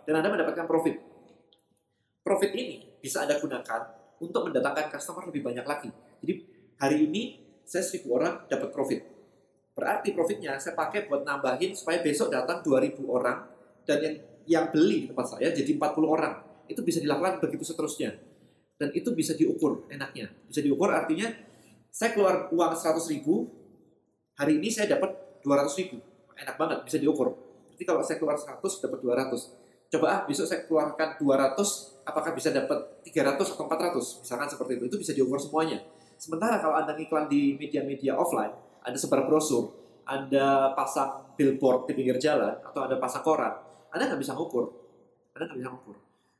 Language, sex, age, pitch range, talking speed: English, male, 30-49, 135-170 Hz, 160 wpm